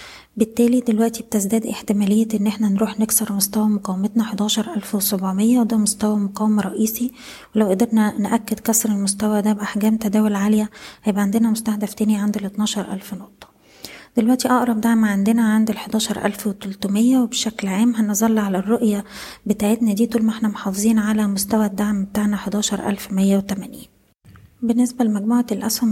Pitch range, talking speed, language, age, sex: 205-225 Hz, 130 wpm, Arabic, 20-39, female